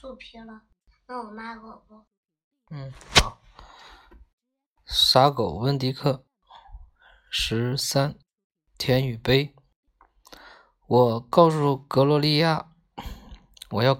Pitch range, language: 130-180 Hz, Chinese